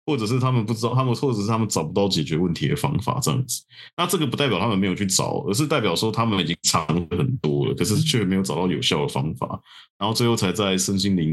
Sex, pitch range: male, 90-120 Hz